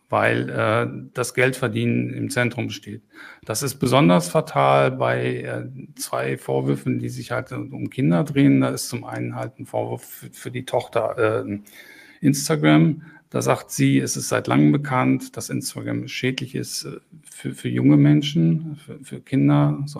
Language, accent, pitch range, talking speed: German, German, 100-140 Hz, 165 wpm